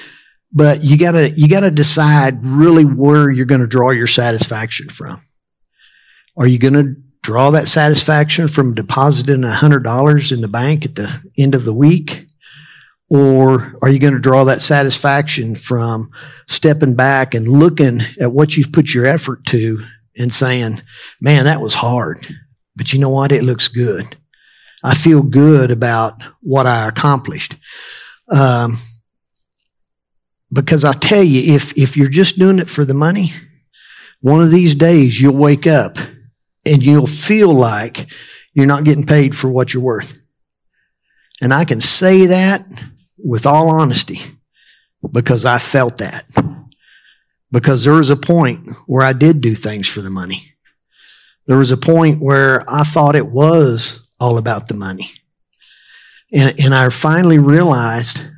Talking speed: 155 wpm